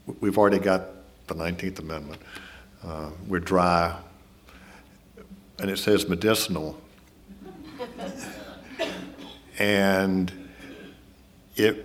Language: English